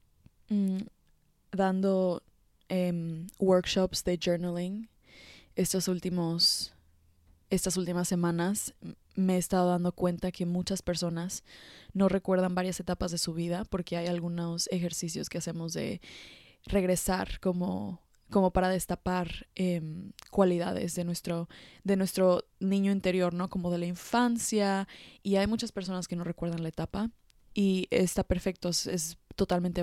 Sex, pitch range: female, 175-190 Hz